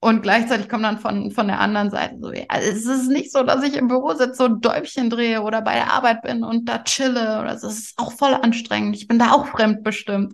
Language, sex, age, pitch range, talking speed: German, female, 20-39, 195-230 Hz, 255 wpm